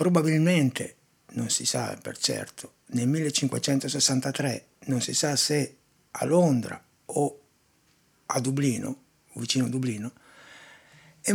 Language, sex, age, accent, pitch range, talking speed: Italian, male, 60-79, native, 125-155 Hz, 110 wpm